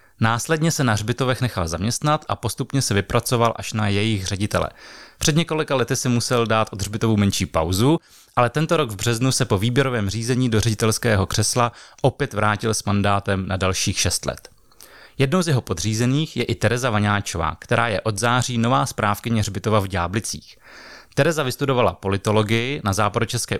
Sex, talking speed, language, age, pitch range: male, 165 wpm, Czech, 30-49, 100-125 Hz